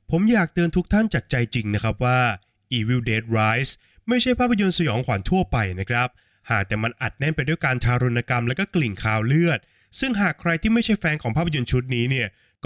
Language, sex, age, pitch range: Thai, male, 20-39, 115-165 Hz